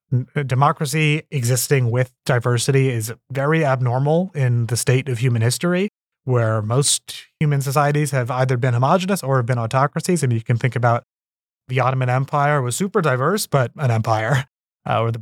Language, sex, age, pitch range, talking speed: English, male, 30-49, 120-150 Hz, 165 wpm